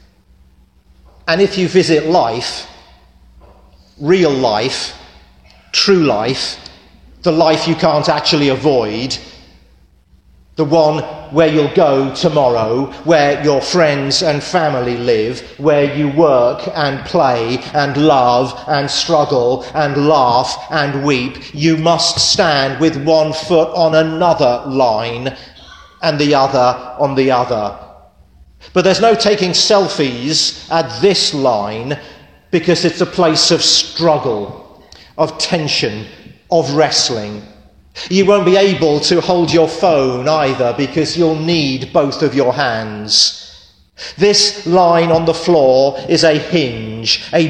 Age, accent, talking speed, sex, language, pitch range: 40-59, British, 125 wpm, male, English, 125-165 Hz